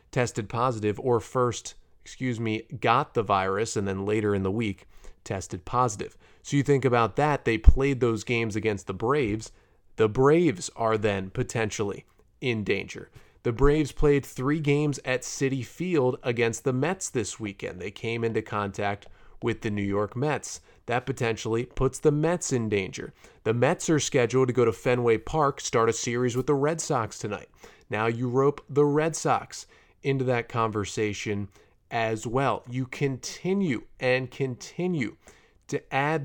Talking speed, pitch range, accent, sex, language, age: 165 wpm, 110-140 Hz, American, male, English, 30-49